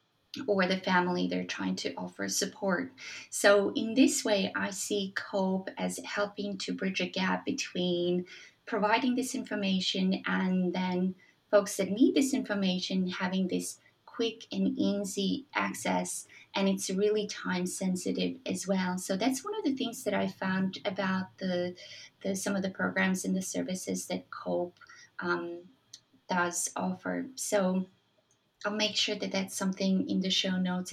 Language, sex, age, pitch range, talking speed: English, female, 20-39, 180-205 Hz, 155 wpm